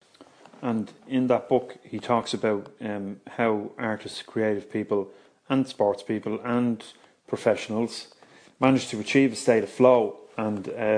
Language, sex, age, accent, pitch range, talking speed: English, male, 30-49, Irish, 105-130 Hz, 140 wpm